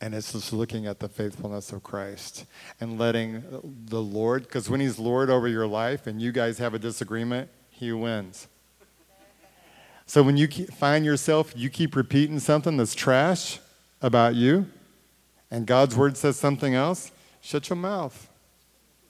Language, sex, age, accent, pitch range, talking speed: English, male, 40-59, American, 115-145 Hz, 155 wpm